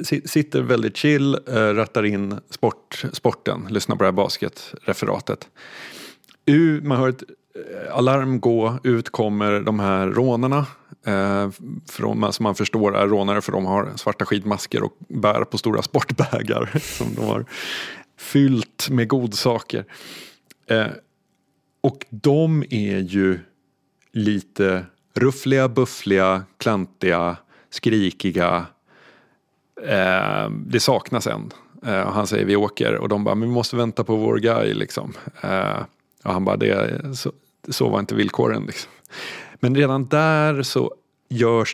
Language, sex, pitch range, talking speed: Swedish, male, 100-130 Hz, 130 wpm